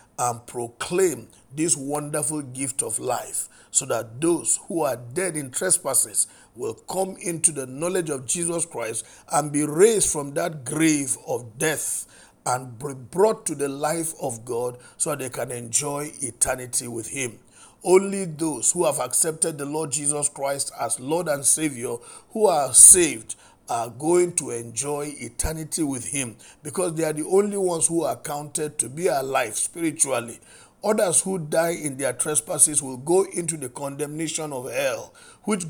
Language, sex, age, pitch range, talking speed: English, male, 50-69, 125-165 Hz, 165 wpm